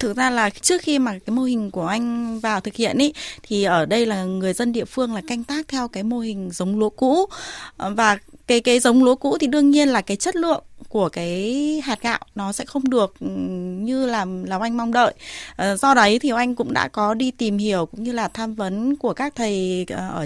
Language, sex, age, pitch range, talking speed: Vietnamese, female, 20-39, 205-280 Hz, 235 wpm